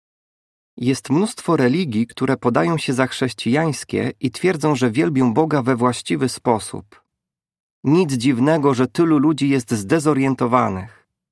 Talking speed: 120 wpm